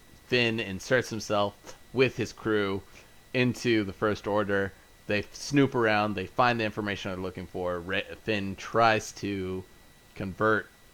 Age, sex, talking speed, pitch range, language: 30-49, male, 130 wpm, 90-110 Hz, English